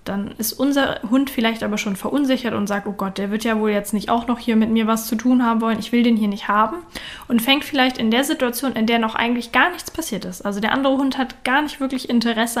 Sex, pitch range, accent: female, 215-255 Hz, German